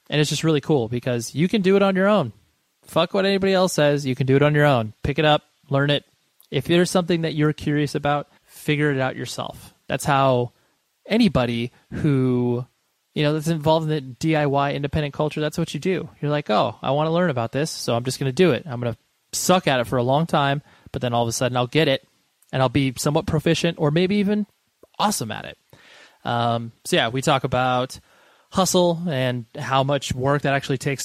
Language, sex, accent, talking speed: English, male, American, 230 wpm